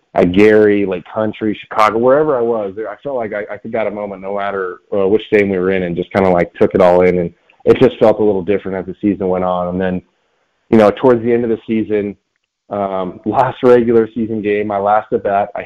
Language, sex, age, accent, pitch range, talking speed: English, male, 20-39, American, 95-110 Hz, 245 wpm